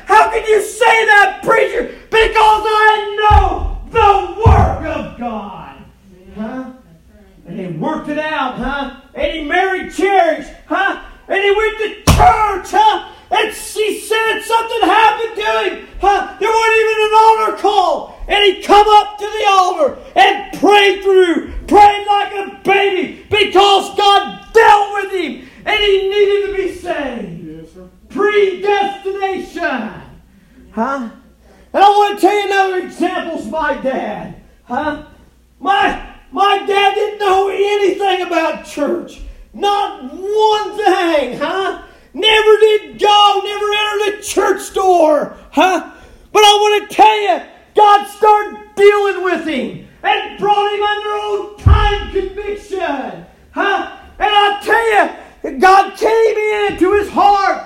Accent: American